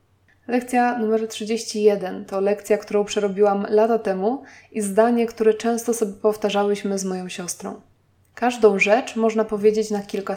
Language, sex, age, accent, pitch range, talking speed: Polish, female, 20-39, native, 195-225 Hz, 140 wpm